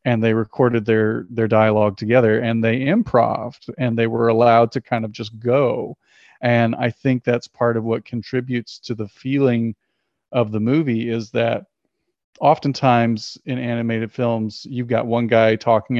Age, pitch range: 40-59, 110-125 Hz